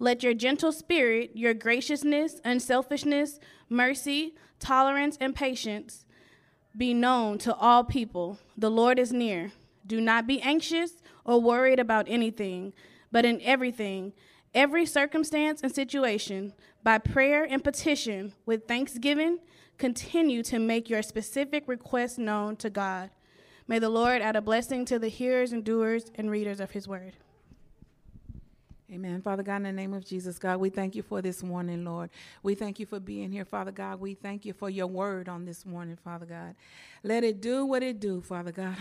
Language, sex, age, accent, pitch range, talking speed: English, female, 20-39, American, 185-250 Hz, 170 wpm